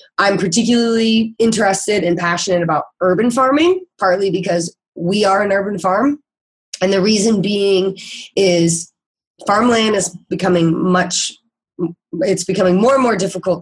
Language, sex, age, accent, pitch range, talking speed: English, female, 20-39, American, 170-205 Hz, 130 wpm